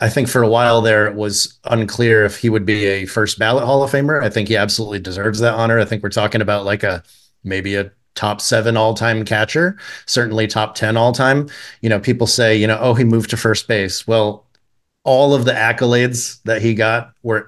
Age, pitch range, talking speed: 30-49, 105-120 Hz, 225 wpm